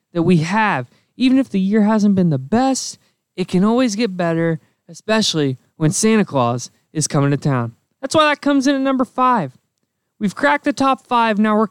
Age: 20-39